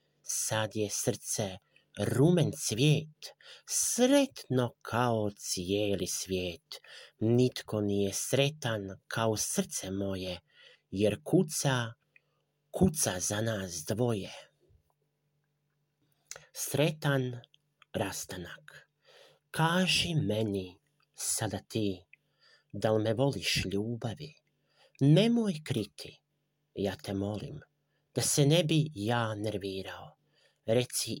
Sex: male